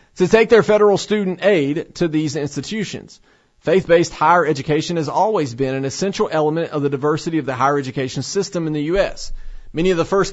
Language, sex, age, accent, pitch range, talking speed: English, male, 40-59, American, 140-190 Hz, 190 wpm